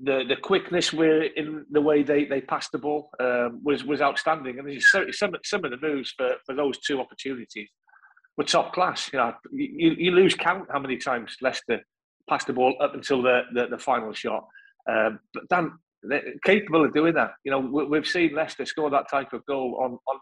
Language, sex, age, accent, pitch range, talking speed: English, male, 40-59, British, 130-160 Hz, 215 wpm